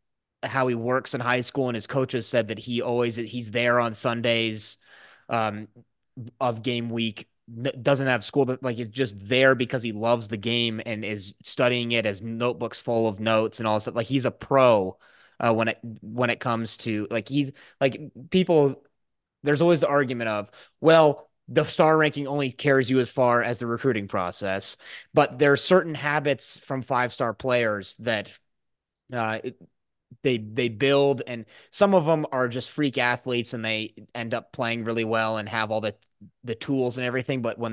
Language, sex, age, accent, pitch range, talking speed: English, male, 20-39, American, 110-130 Hz, 190 wpm